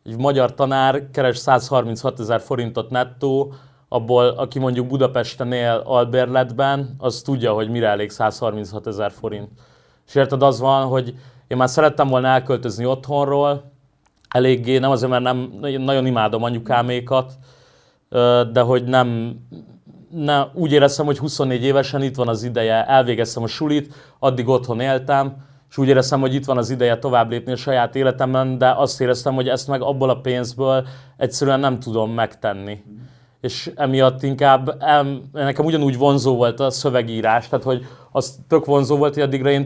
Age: 30-49